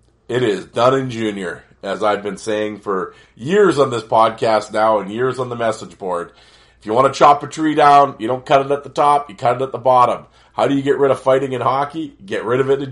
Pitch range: 110-145 Hz